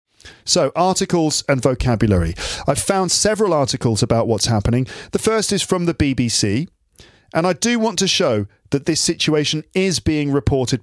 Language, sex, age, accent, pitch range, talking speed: English, male, 40-59, British, 115-160 Hz, 160 wpm